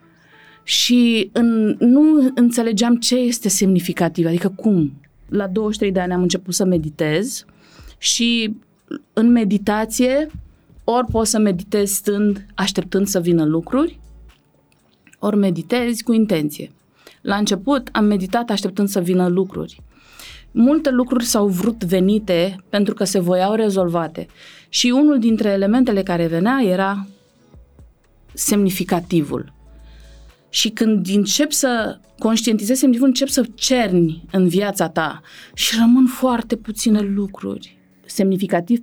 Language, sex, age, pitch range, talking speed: Romanian, female, 30-49, 180-240 Hz, 115 wpm